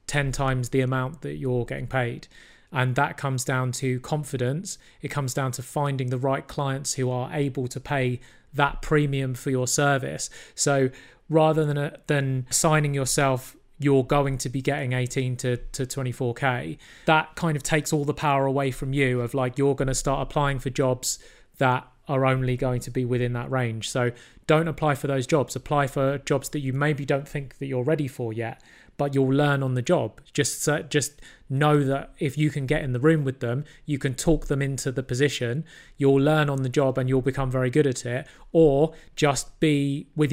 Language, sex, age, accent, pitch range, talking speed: English, male, 30-49, British, 130-145 Hz, 200 wpm